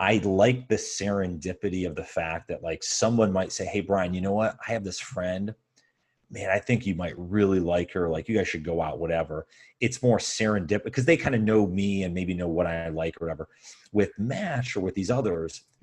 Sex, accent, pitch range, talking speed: male, American, 85-110 Hz, 225 wpm